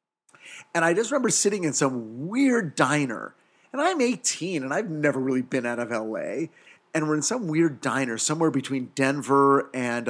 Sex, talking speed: male, 180 wpm